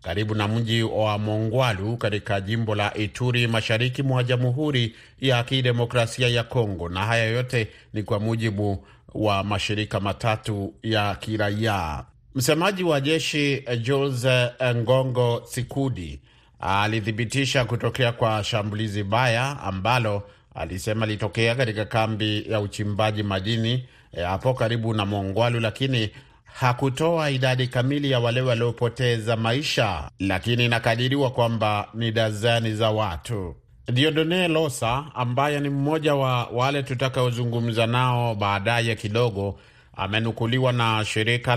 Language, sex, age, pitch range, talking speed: Swahili, male, 40-59, 110-130 Hz, 115 wpm